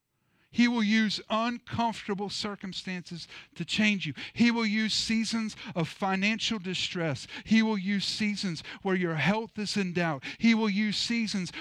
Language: English